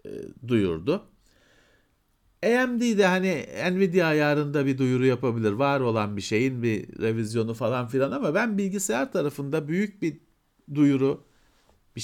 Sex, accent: male, native